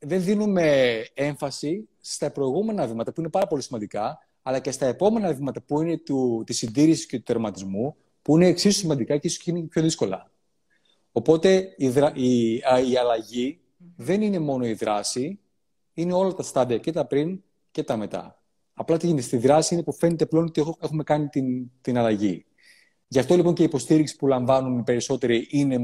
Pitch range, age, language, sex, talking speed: 115-160 Hz, 30-49, Greek, male, 180 wpm